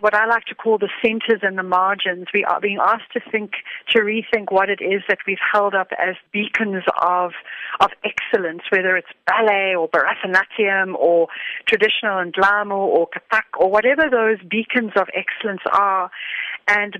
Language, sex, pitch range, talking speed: English, female, 190-225 Hz, 170 wpm